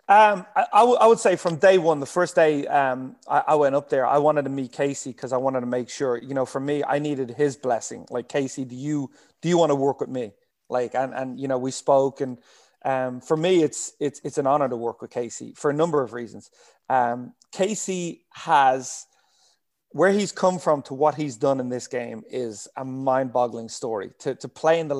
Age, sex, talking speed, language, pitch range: 30-49, male, 230 wpm, English, 135-165 Hz